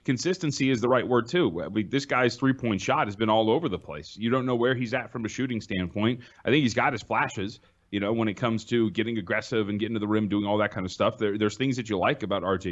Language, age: English, 30-49